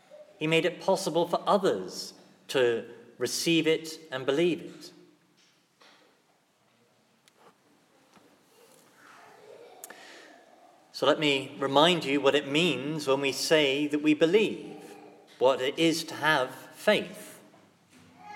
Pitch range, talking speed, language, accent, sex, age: 145-195 Hz, 105 wpm, English, British, male, 40-59